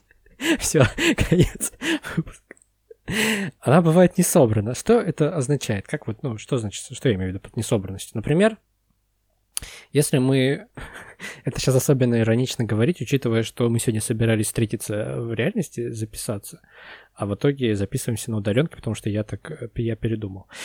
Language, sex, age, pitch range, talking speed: Russian, male, 20-39, 110-145 Hz, 140 wpm